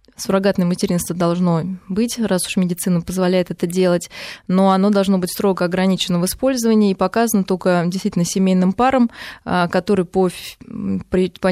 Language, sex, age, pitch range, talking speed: Russian, female, 20-39, 175-200 Hz, 140 wpm